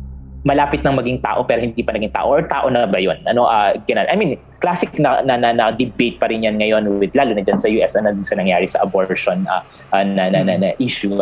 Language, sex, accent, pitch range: Filipino, male, native, 100-150 Hz